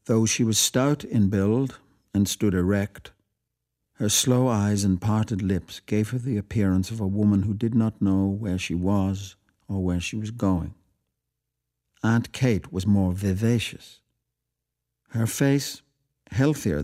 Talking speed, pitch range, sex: 150 wpm, 95-120 Hz, male